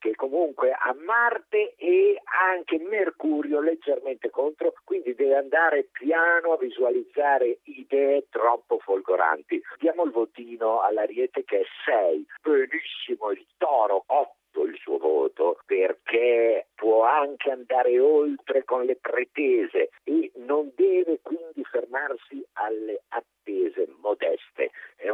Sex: male